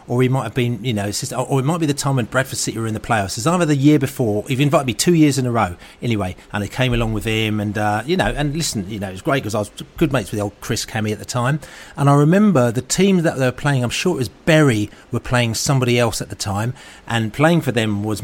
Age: 30-49